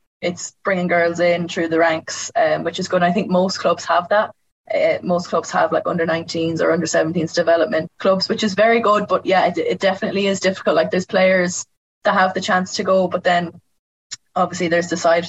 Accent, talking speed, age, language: Irish, 210 wpm, 20-39, English